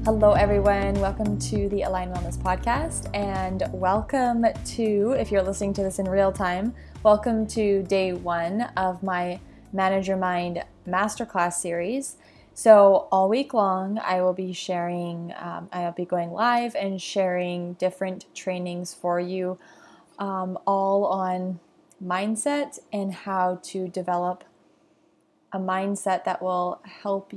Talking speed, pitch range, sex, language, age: 135 wpm, 180-205 Hz, female, English, 20-39